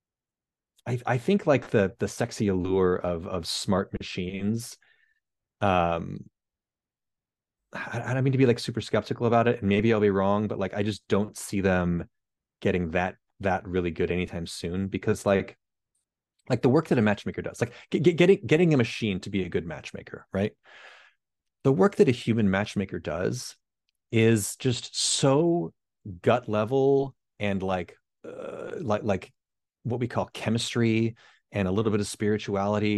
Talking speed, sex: 165 wpm, male